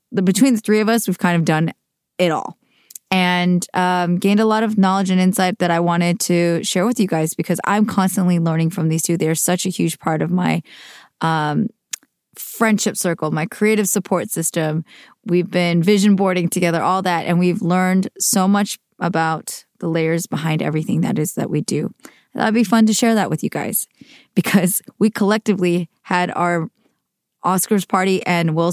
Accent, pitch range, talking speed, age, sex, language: American, 170-205 Hz, 190 wpm, 20-39, female, English